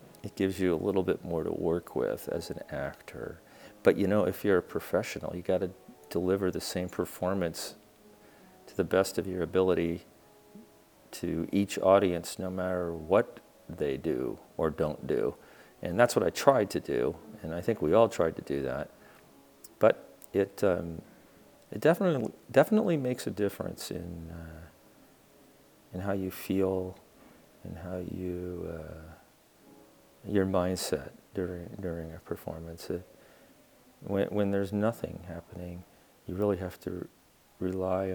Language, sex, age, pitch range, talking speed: English, male, 40-59, 85-95 Hz, 150 wpm